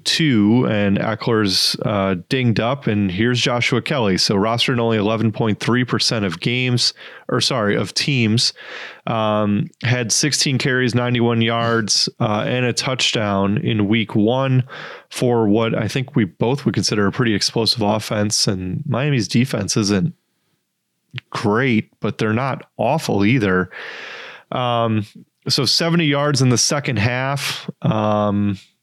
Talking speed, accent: 135 wpm, American